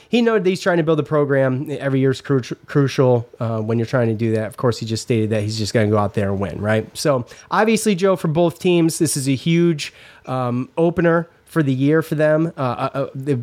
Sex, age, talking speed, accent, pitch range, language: male, 30-49, 250 wpm, American, 120-155 Hz, English